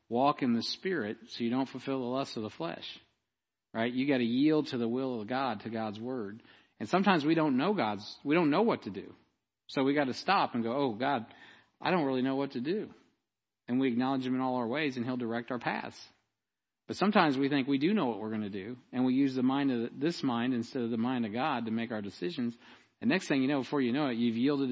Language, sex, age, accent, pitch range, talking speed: English, male, 40-59, American, 115-135 Hz, 260 wpm